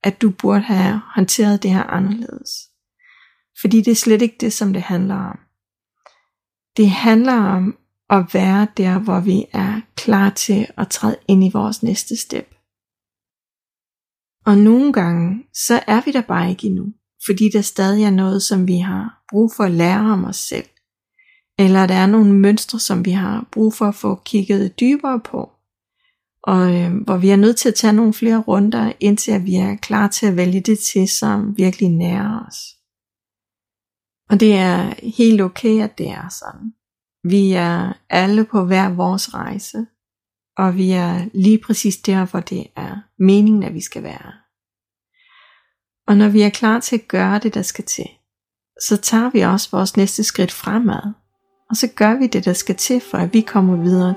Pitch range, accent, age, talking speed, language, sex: 190-220 Hz, native, 30-49, 180 wpm, Danish, female